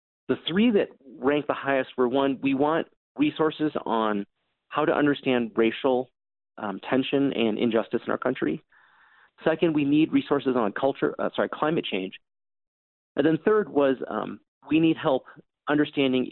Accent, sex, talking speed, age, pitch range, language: American, male, 155 wpm, 30-49, 115-150 Hz, English